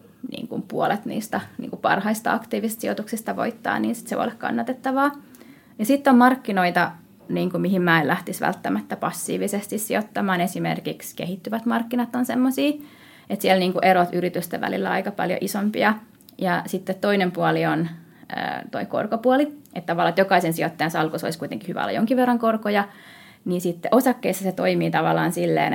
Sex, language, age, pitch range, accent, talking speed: female, Finnish, 20-39, 175-240 Hz, native, 155 wpm